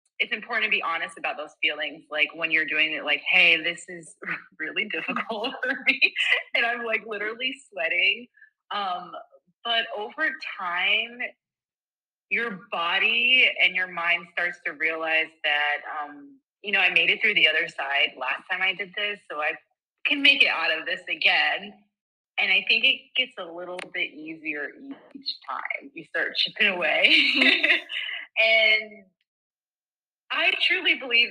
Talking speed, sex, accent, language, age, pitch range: 155 wpm, female, American, English, 20-39, 165-235 Hz